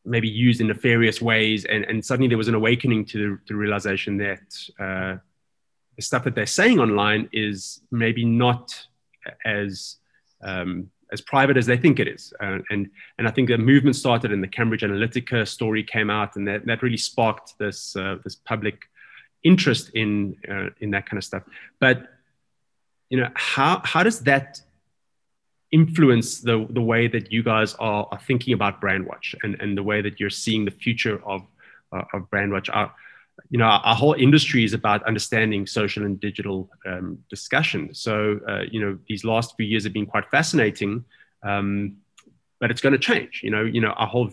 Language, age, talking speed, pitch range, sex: English, 20-39, 190 wpm, 105-125 Hz, male